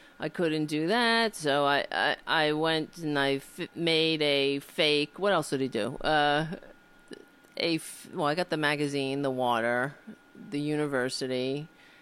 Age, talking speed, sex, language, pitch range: 40-59, 160 wpm, female, English, 140-200 Hz